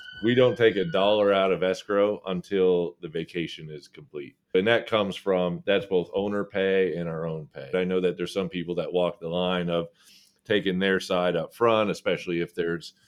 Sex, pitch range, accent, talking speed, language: male, 85-100 Hz, American, 200 wpm, English